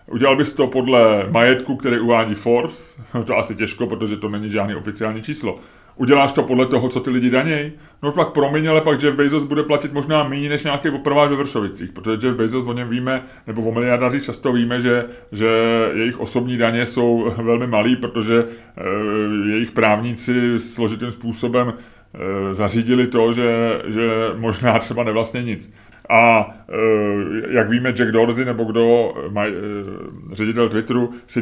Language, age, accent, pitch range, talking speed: Czech, 30-49, native, 110-130 Hz, 170 wpm